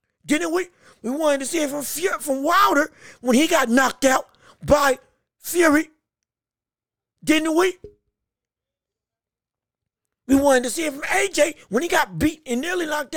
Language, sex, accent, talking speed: English, male, American, 155 wpm